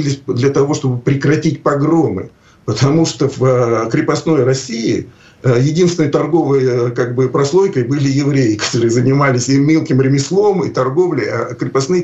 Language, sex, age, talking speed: Russian, male, 50-69, 120 wpm